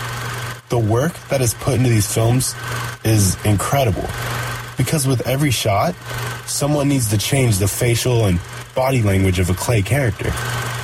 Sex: male